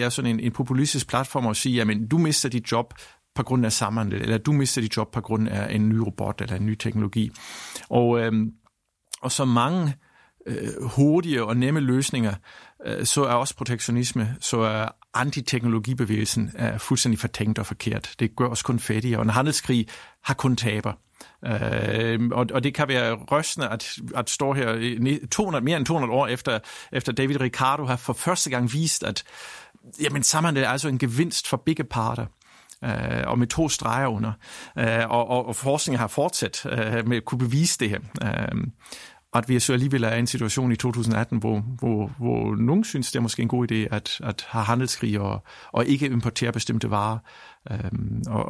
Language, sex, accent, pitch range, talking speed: Danish, male, native, 110-135 Hz, 190 wpm